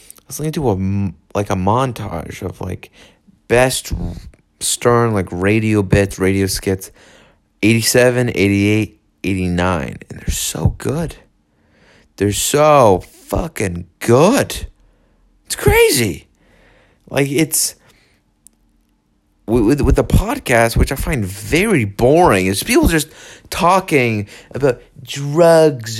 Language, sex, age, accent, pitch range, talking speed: English, male, 30-49, American, 100-150 Hz, 110 wpm